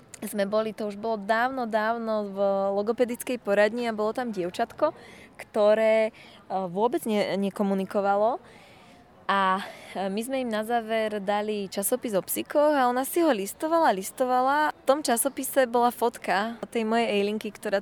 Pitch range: 205-245 Hz